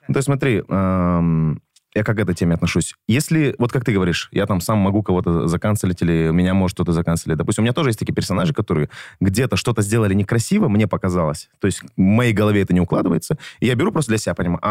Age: 20-39